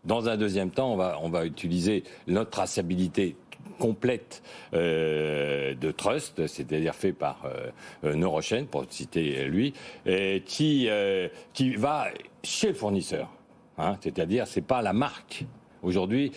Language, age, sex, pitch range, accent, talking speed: French, 60-79, male, 90-120 Hz, French, 145 wpm